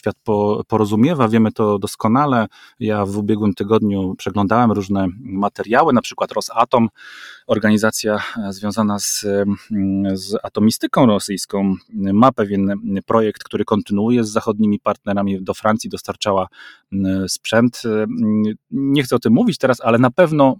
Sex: male